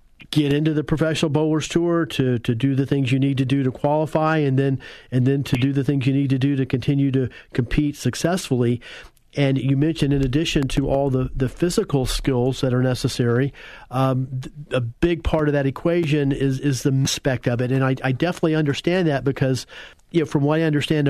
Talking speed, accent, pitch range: 210 wpm, American, 135-155 Hz